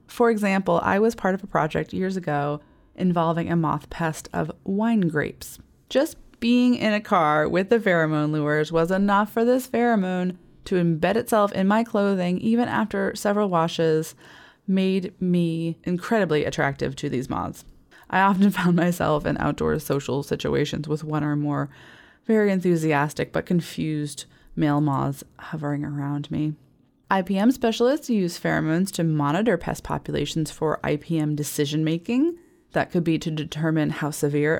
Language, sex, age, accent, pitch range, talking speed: English, female, 20-39, American, 150-205 Hz, 150 wpm